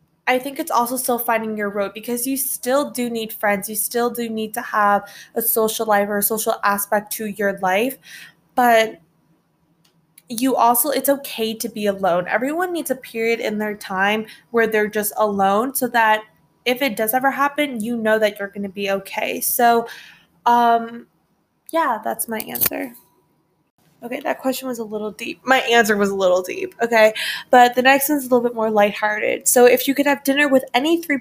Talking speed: 195 wpm